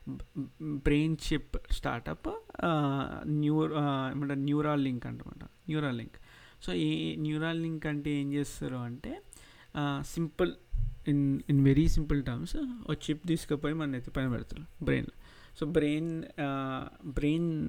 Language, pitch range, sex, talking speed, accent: Telugu, 135-165 Hz, male, 115 wpm, native